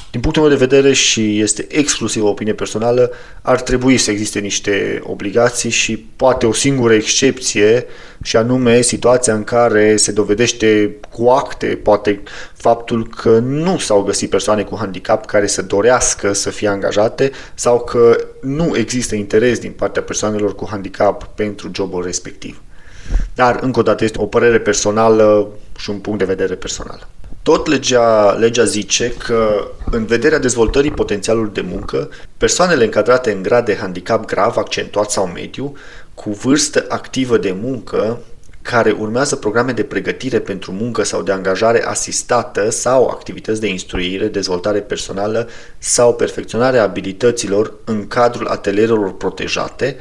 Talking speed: 145 wpm